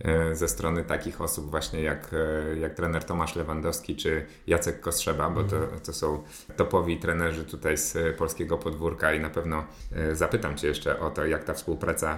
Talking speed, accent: 170 wpm, native